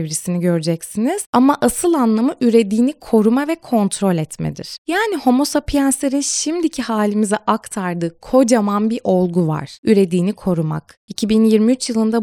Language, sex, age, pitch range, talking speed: Turkish, female, 20-39, 185-250 Hz, 115 wpm